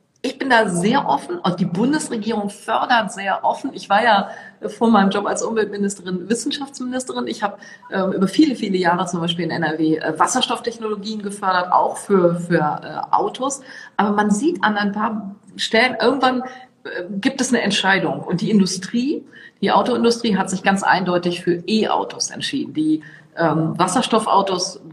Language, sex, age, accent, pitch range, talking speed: German, female, 40-59, German, 170-215 Hz, 155 wpm